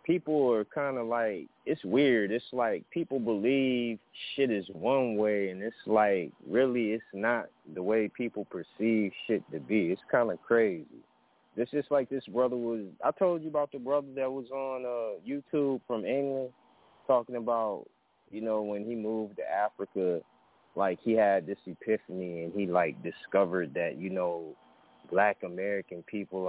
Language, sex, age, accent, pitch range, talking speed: English, male, 20-39, American, 95-130 Hz, 170 wpm